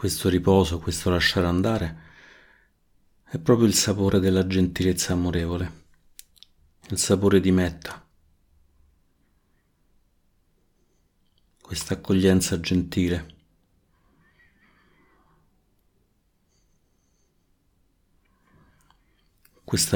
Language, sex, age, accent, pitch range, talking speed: Italian, male, 50-69, native, 85-95 Hz, 60 wpm